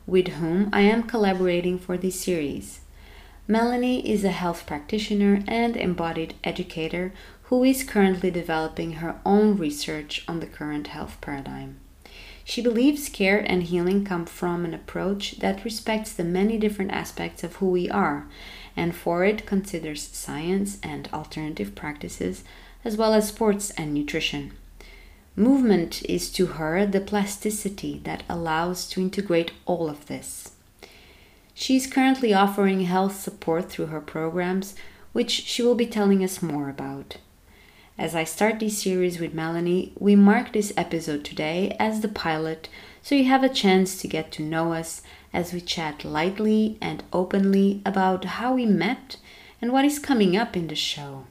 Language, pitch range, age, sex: English, 155-205 Hz, 20-39, female